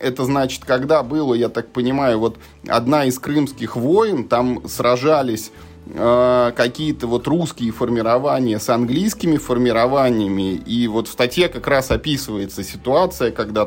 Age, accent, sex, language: 20-39, native, male, Russian